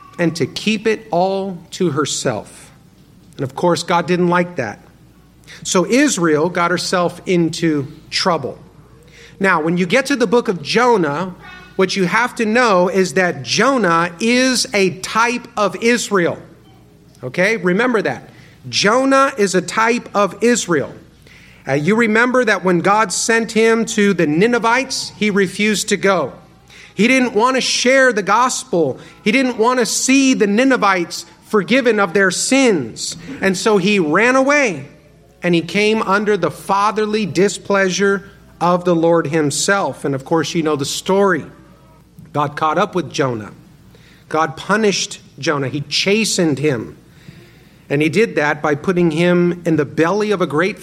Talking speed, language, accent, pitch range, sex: 155 wpm, English, American, 160-215 Hz, male